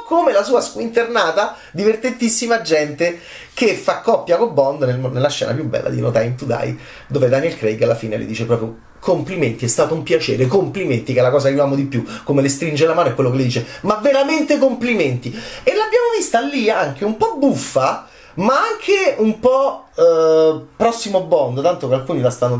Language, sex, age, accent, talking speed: Italian, male, 30-49, native, 205 wpm